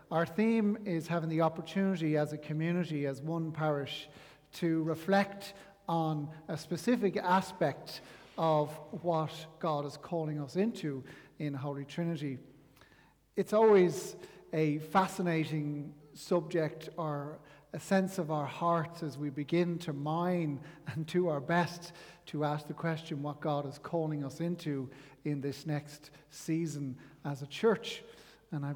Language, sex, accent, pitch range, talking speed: English, male, Irish, 150-175 Hz, 140 wpm